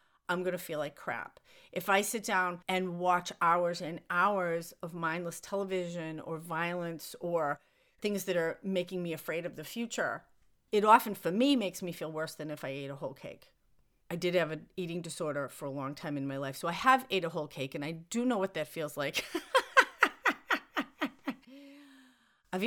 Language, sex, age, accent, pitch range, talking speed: English, female, 40-59, American, 160-200 Hz, 195 wpm